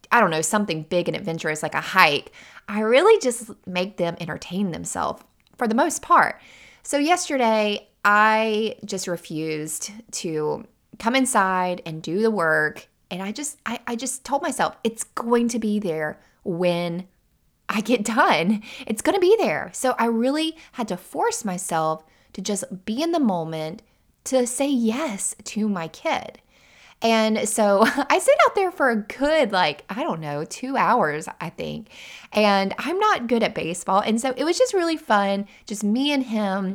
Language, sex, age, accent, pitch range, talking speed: English, female, 20-39, American, 185-255 Hz, 175 wpm